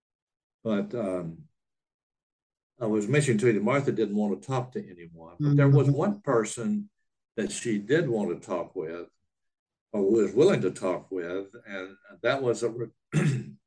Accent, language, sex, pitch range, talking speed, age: American, English, male, 95-120 Hz, 165 wpm, 60-79